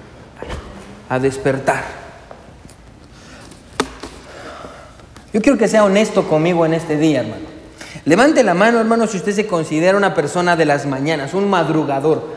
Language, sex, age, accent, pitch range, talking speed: Spanish, male, 30-49, Mexican, 160-210 Hz, 130 wpm